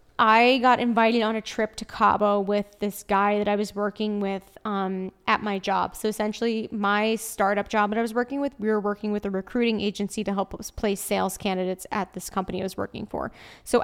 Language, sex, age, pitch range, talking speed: English, female, 20-39, 205-235 Hz, 220 wpm